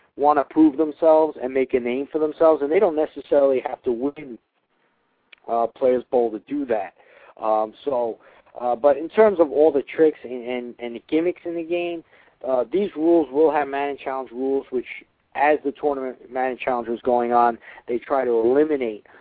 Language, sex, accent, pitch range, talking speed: English, male, American, 120-150 Hz, 200 wpm